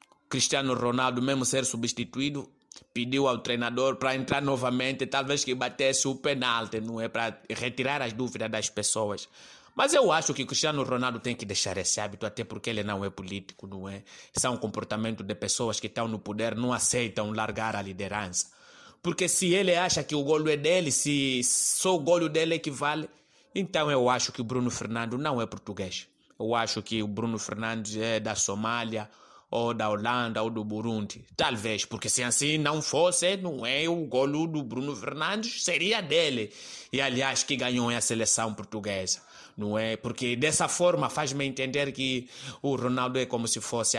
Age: 20-39